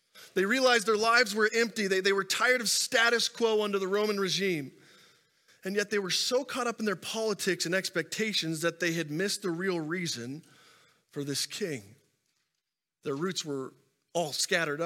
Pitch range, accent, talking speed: 170-220 Hz, American, 180 wpm